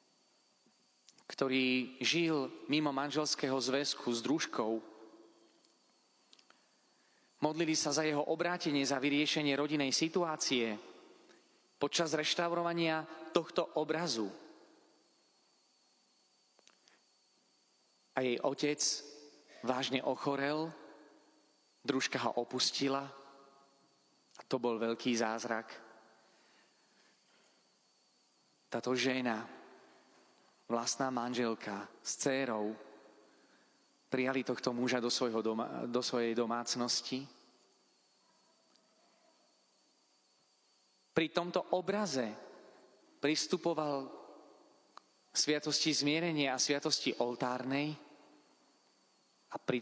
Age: 30-49